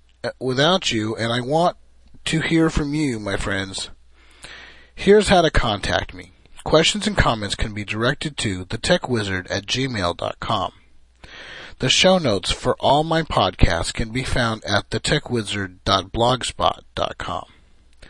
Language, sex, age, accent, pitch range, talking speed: English, male, 40-59, American, 95-150 Hz, 125 wpm